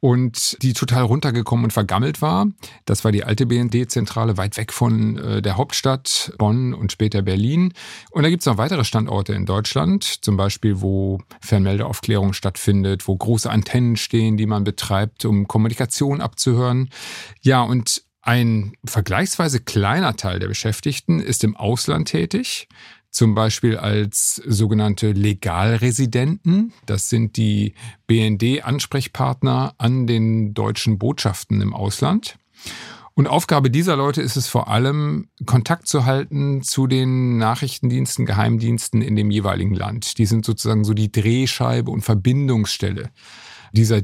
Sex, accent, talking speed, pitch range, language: male, German, 135 wpm, 105-130 Hz, German